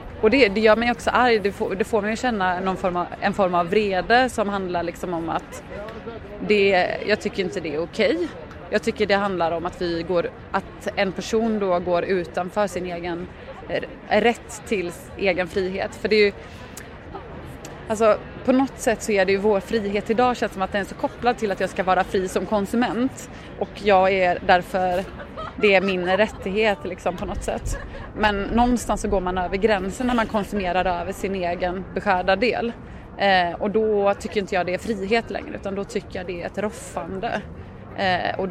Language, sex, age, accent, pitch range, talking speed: Swedish, female, 20-39, native, 185-215 Hz, 180 wpm